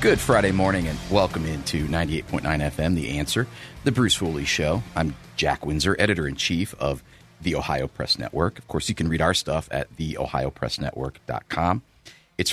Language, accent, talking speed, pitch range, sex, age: English, American, 160 wpm, 80-100 Hz, male, 40-59